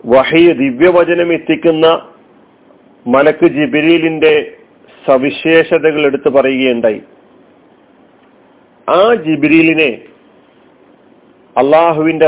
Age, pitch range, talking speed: 40-59, 140-170 Hz, 55 wpm